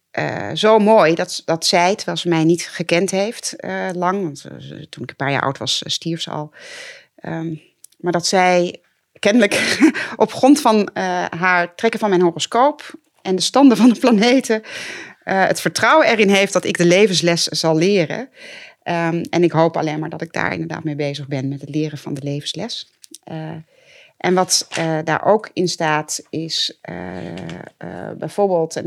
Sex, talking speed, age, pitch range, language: female, 180 wpm, 30-49, 165-215 Hz, Dutch